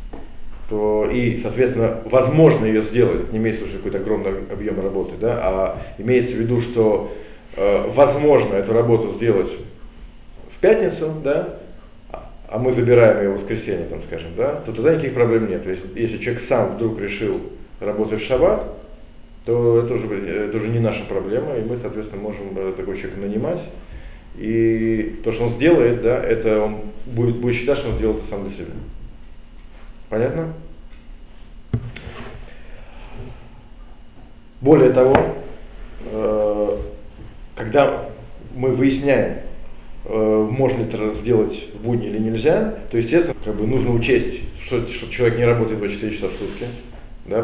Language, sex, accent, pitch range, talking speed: Russian, male, native, 105-120 Hz, 145 wpm